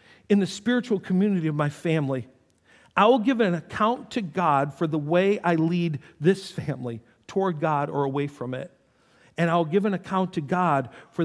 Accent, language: American, English